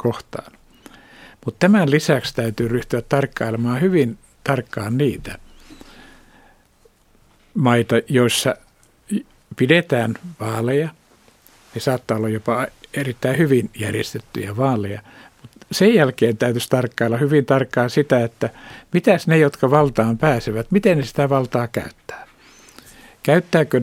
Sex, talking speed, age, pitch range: male, 105 wpm, 60-79, 115-145 Hz